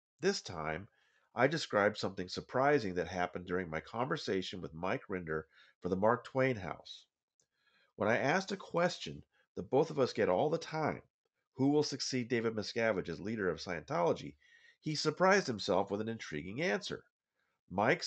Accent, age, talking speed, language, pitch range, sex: American, 40-59, 165 wpm, English, 95-140 Hz, male